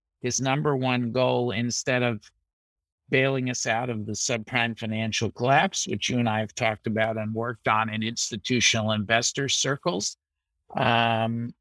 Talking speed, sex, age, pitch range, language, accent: 150 wpm, male, 50-69, 110-130 Hz, English, American